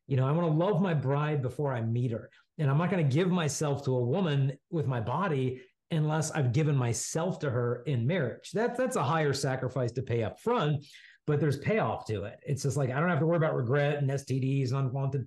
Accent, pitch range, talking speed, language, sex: American, 130-165 Hz, 235 wpm, English, male